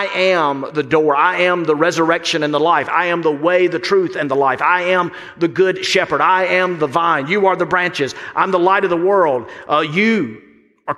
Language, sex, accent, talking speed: English, male, American, 230 wpm